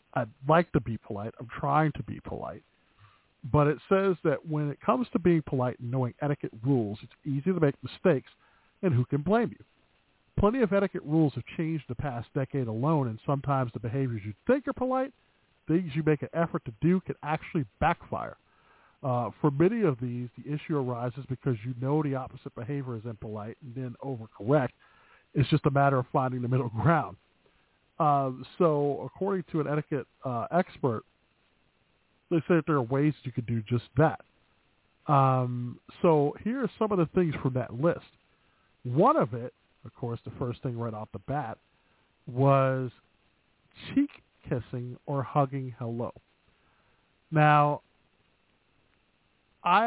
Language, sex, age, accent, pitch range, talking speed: English, male, 50-69, American, 125-160 Hz, 170 wpm